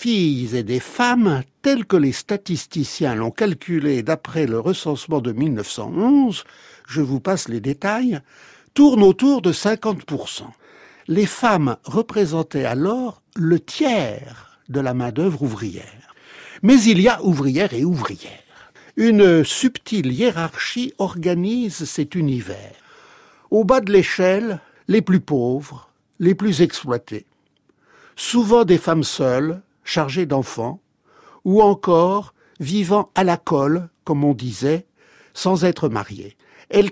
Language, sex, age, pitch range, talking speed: French, male, 60-79, 140-205 Hz, 125 wpm